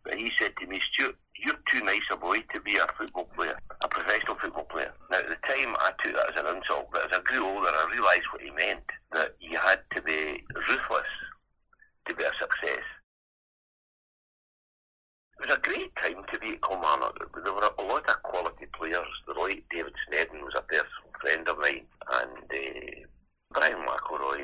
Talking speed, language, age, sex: 200 wpm, English, 60-79, male